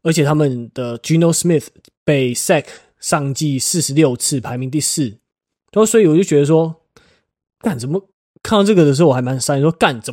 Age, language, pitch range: 20-39, Chinese, 140-170 Hz